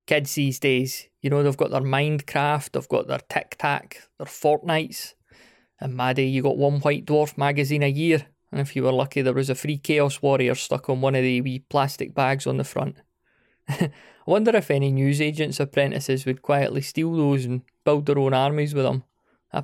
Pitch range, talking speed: 130-150 Hz, 200 wpm